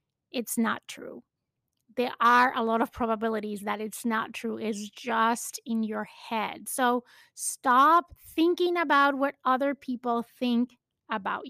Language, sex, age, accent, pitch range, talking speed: English, female, 30-49, American, 225-270 Hz, 140 wpm